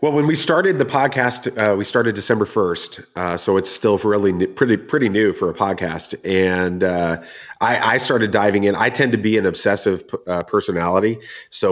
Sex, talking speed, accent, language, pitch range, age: male, 190 wpm, American, English, 95-110 Hz, 30-49